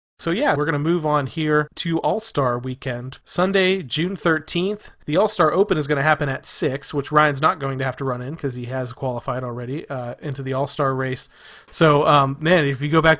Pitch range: 135-155 Hz